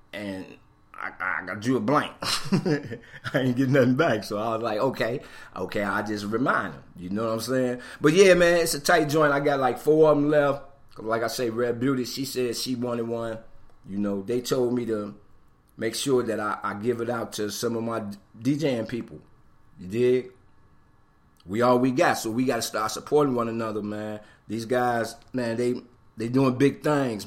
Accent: American